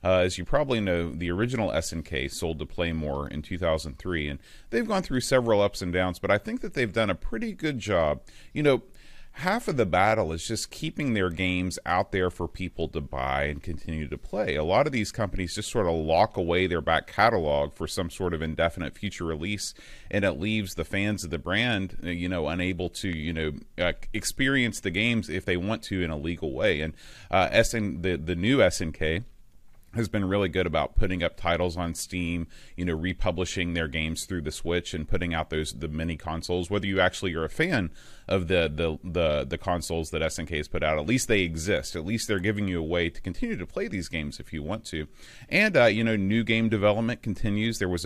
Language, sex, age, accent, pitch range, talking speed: English, male, 30-49, American, 80-105 Hz, 225 wpm